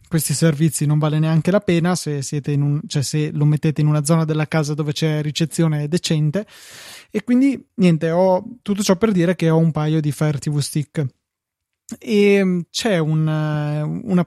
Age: 20-39